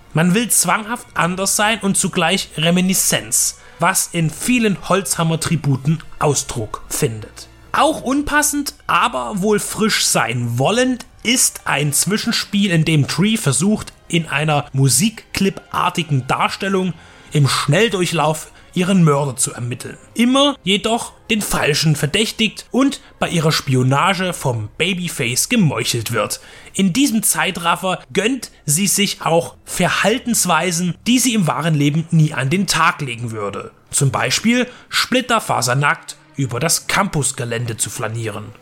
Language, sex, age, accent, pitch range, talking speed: German, male, 30-49, German, 140-205 Hz, 120 wpm